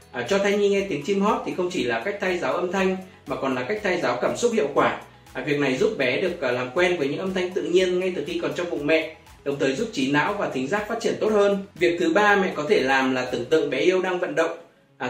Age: 20-39